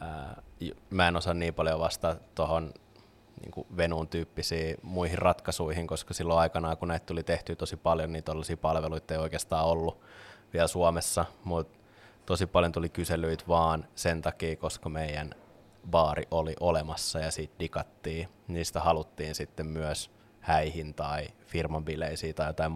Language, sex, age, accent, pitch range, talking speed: Finnish, male, 20-39, native, 80-90 Hz, 140 wpm